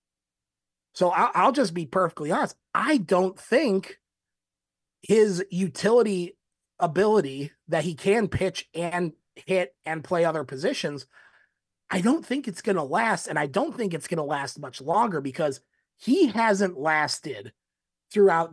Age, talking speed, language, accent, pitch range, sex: 30-49, 145 wpm, English, American, 145-200 Hz, male